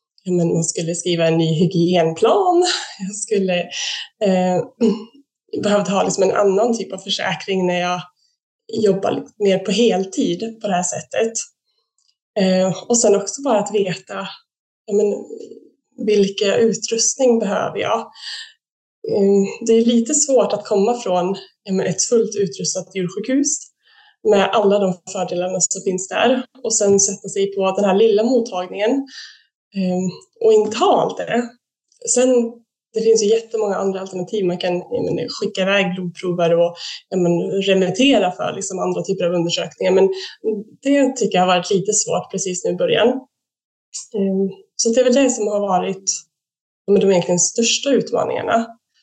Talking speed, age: 145 wpm, 20-39